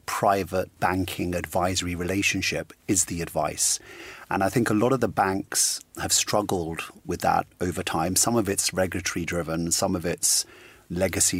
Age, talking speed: 30-49, 160 wpm